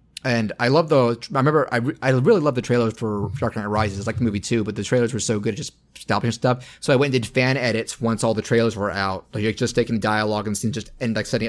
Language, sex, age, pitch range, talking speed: English, male, 30-49, 110-135 Hz, 280 wpm